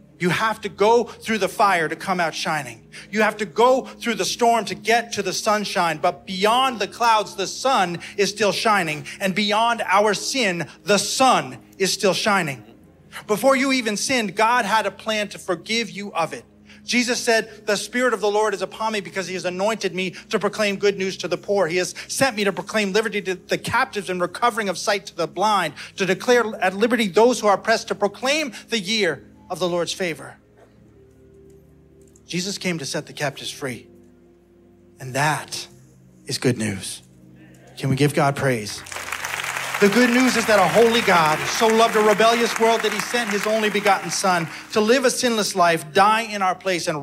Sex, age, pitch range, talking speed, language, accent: male, 30-49, 165-220 Hz, 200 wpm, English, American